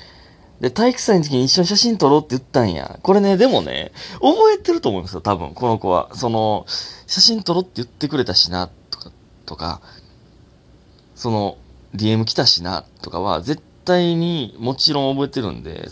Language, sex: Japanese, male